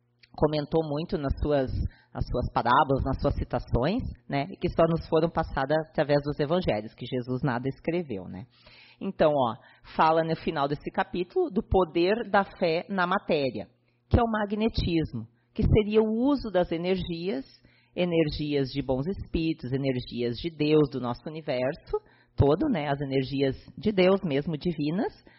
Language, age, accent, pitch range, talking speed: Portuguese, 30-49, Brazilian, 135-180 Hz, 150 wpm